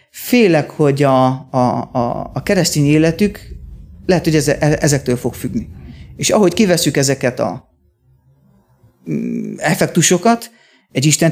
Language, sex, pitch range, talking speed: Hungarian, male, 130-175 Hz, 100 wpm